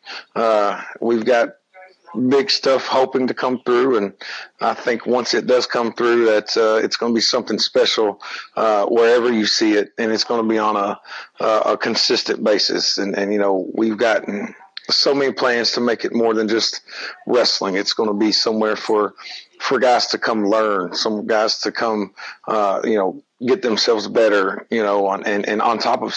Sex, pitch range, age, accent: male, 105-120 Hz, 40-59, American